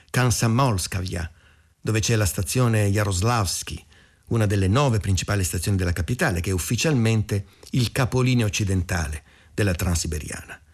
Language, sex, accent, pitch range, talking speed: Italian, male, native, 95-130 Hz, 125 wpm